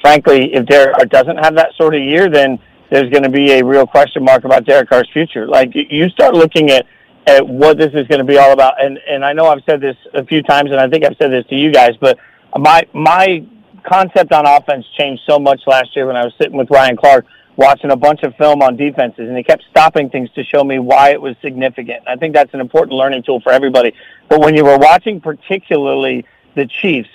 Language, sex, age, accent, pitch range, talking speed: English, male, 40-59, American, 135-155 Hz, 240 wpm